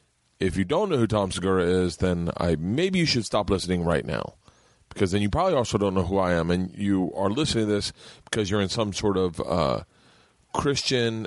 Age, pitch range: 40-59, 85-110 Hz